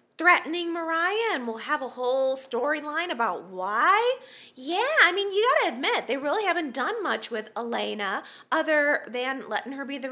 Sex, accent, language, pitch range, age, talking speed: female, American, English, 225-315 Hz, 30-49, 170 wpm